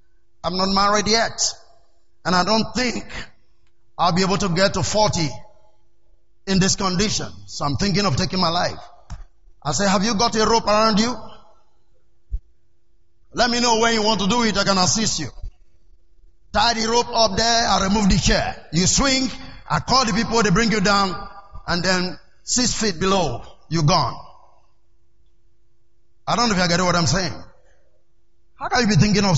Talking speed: 180 wpm